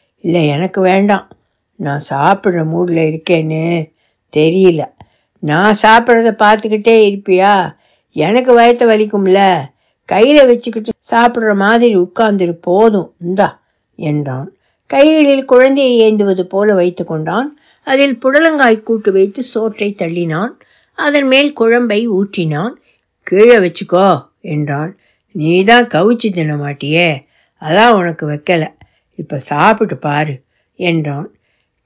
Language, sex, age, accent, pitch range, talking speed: Tamil, female, 60-79, native, 175-245 Hz, 95 wpm